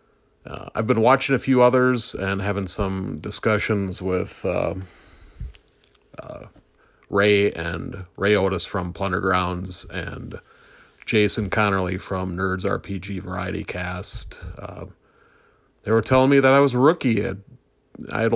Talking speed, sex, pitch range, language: 130 wpm, male, 90-115 Hz, English